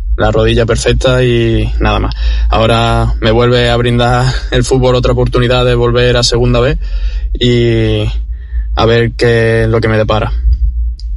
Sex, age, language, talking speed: male, 20-39, Spanish, 155 wpm